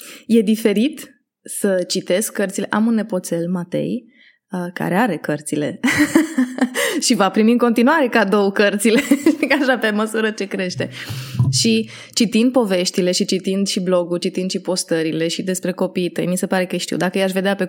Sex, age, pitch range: female, 20-39, 185-235 Hz